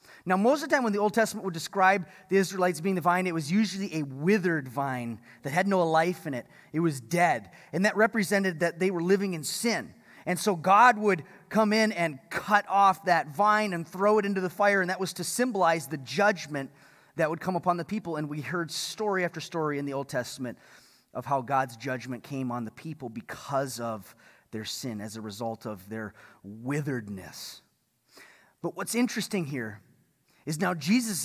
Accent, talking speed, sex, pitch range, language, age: American, 200 wpm, male, 155-240 Hz, English, 30-49